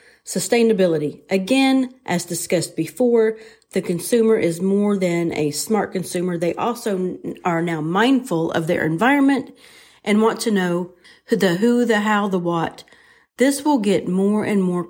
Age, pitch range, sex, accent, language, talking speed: 40-59, 175-230 Hz, female, American, English, 155 wpm